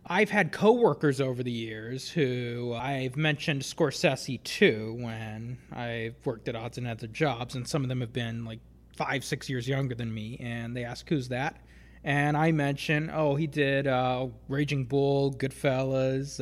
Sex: male